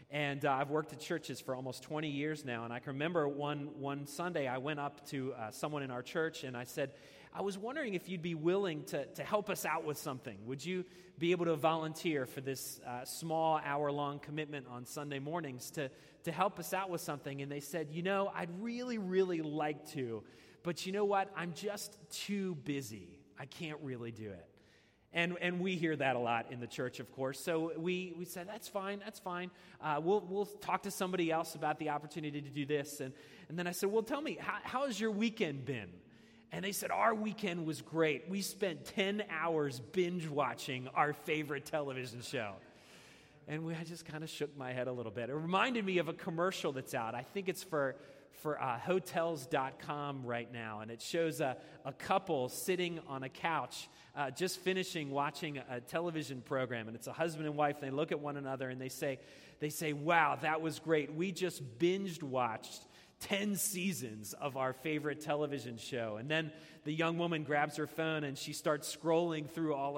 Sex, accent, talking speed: male, American, 210 wpm